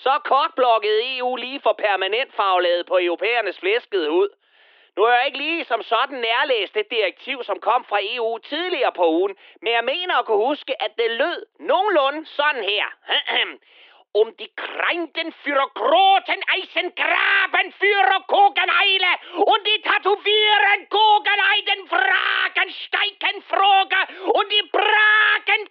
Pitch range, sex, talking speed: 255-400 Hz, male, 140 wpm